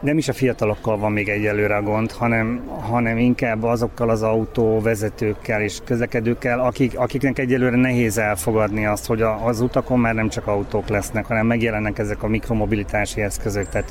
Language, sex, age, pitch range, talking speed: Hungarian, male, 30-49, 110-130 Hz, 165 wpm